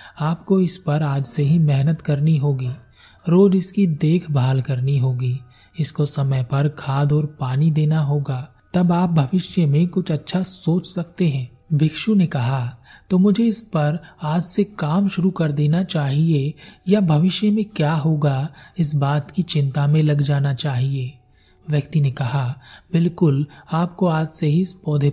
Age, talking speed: 30-49, 160 wpm